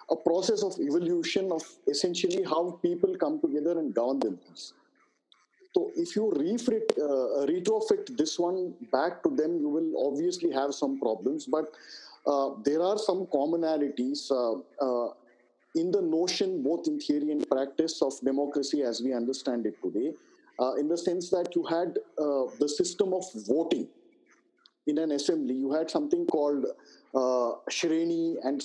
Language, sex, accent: English, male, Indian